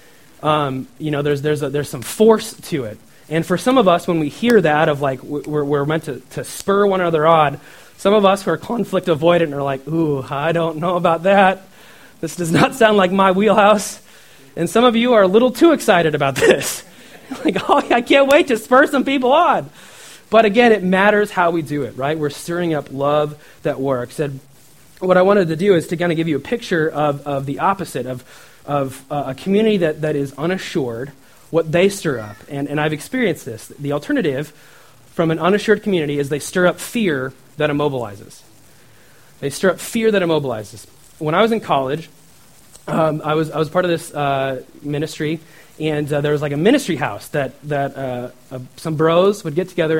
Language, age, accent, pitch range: English, 30-49, American, 145-195 Hz